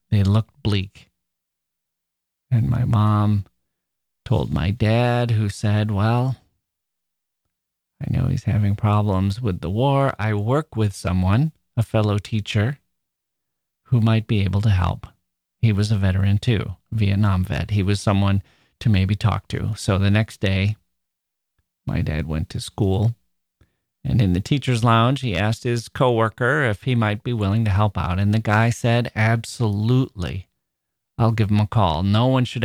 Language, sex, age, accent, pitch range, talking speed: English, male, 40-59, American, 95-115 Hz, 160 wpm